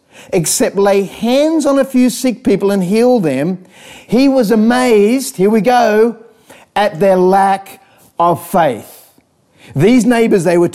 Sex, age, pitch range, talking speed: male, 40-59, 180-230 Hz, 145 wpm